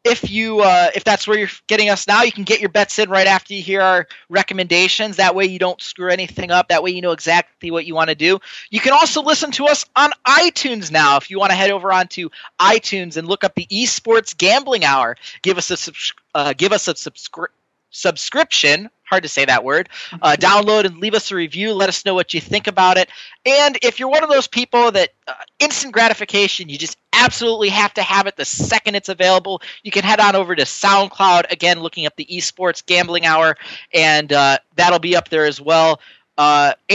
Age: 30-49